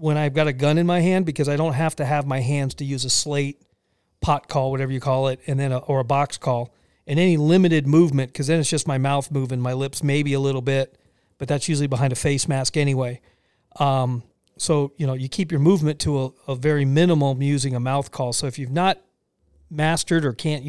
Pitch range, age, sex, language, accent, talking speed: 135-165 Hz, 40-59, male, English, American, 240 wpm